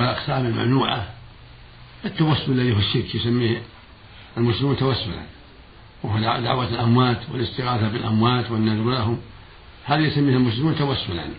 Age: 60-79